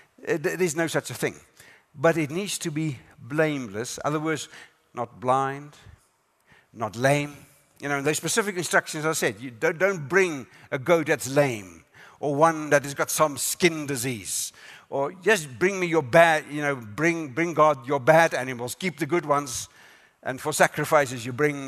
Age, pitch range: 60-79, 130-165 Hz